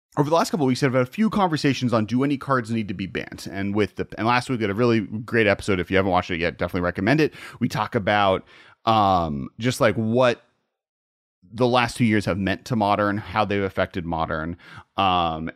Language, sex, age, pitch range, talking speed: English, male, 30-49, 95-125 Hz, 235 wpm